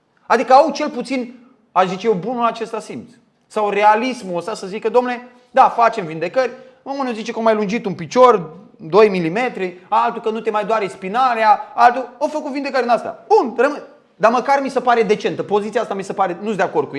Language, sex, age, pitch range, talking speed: Romanian, male, 30-49, 175-245 Hz, 205 wpm